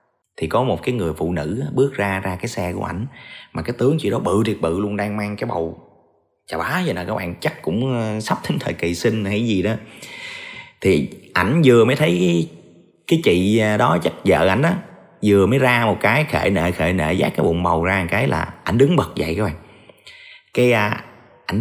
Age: 30-49